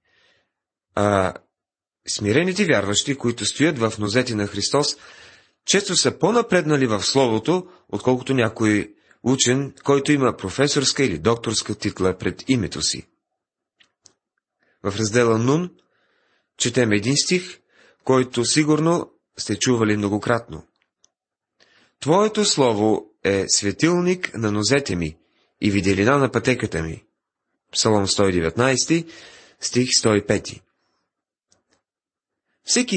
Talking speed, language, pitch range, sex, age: 100 wpm, Bulgarian, 100-140 Hz, male, 30-49